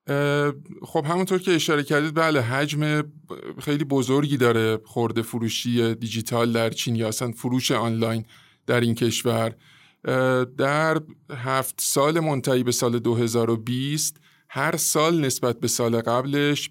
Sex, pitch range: male, 115-145 Hz